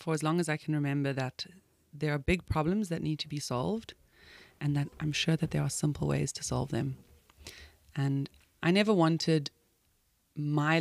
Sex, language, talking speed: female, English, 190 wpm